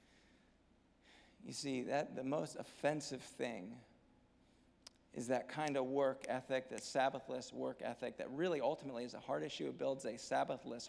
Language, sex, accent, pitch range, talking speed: English, male, American, 140-200 Hz, 155 wpm